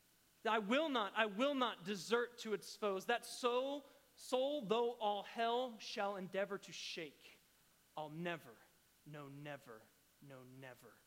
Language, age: English, 30-49